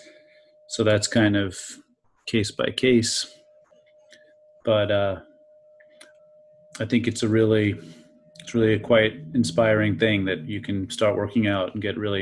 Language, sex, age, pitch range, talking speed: English, male, 30-49, 100-120 Hz, 140 wpm